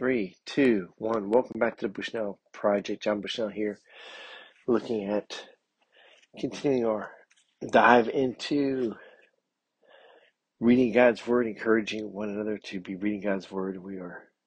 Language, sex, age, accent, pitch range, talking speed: English, male, 50-69, American, 100-115 Hz, 130 wpm